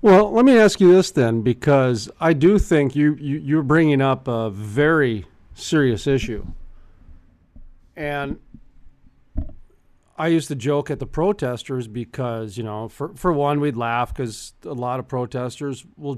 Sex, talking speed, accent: male, 150 wpm, American